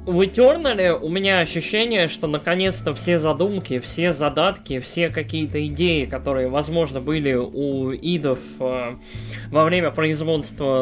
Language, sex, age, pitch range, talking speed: Russian, male, 20-39, 145-180 Hz, 120 wpm